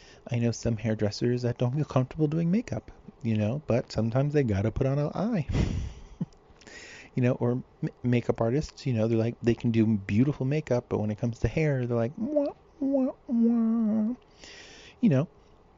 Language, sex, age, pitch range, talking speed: English, male, 30-49, 105-135 Hz, 185 wpm